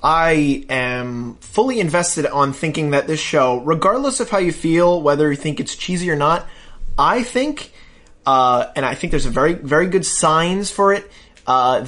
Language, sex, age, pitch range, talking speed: English, male, 20-39, 140-195 Hz, 180 wpm